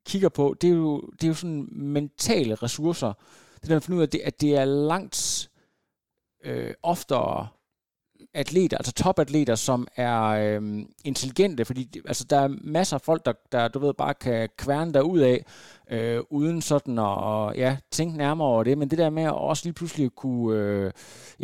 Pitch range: 125-160 Hz